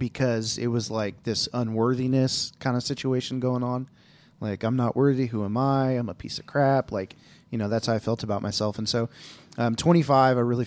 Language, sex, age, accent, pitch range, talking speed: English, male, 30-49, American, 110-125 Hz, 215 wpm